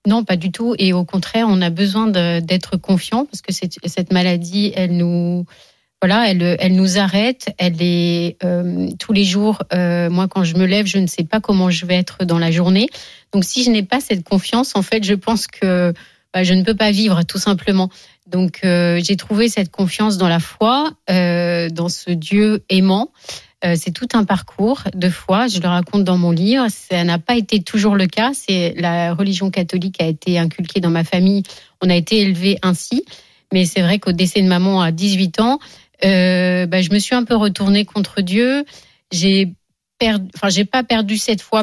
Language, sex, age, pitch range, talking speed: French, female, 30-49, 180-215 Hz, 205 wpm